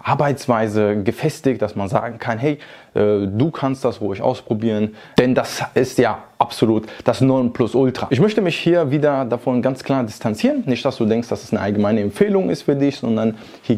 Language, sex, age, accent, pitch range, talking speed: German, male, 20-39, German, 110-135 Hz, 195 wpm